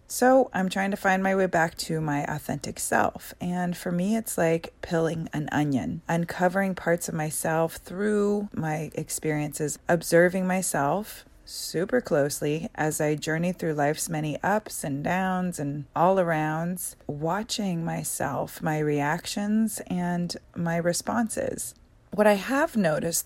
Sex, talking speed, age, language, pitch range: female, 140 wpm, 30-49, English, 155-195 Hz